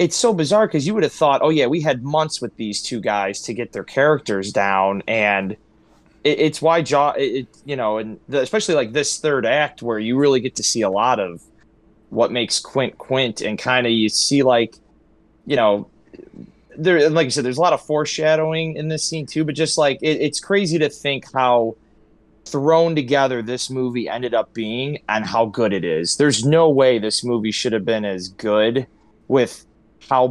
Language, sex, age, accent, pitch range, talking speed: English, male, 20-39, American, 110-140 Hz, 210 wpm